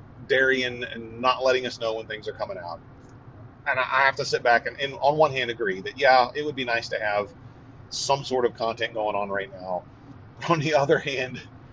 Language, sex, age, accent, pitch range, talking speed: English, male, 40-59, American, 115-145 Hz, 230 wpm